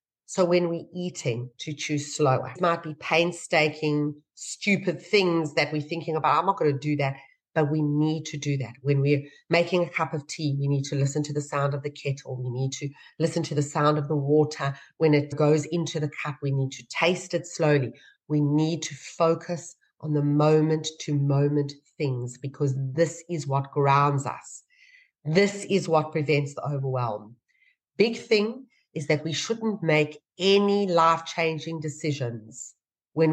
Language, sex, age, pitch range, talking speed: English, female, 40-59, 140-165 Hz, 180 wpm